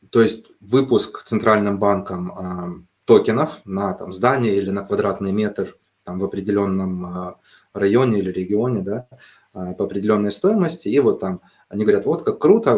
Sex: male